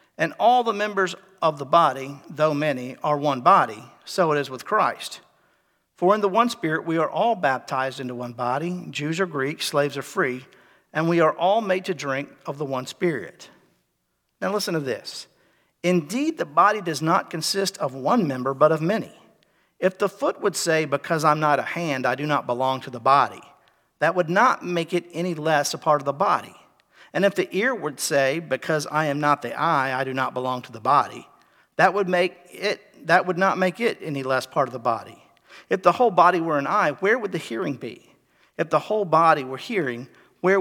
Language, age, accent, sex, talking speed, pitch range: English, 50-69, American, male, 210 wpm, 140-180 Hz